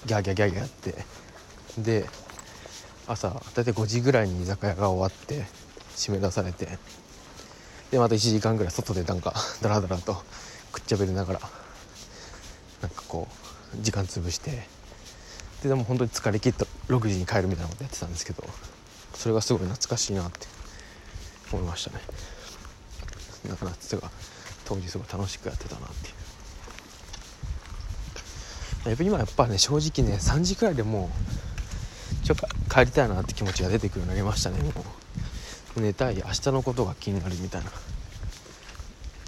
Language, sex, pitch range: Japanese, male, 90-110 Hz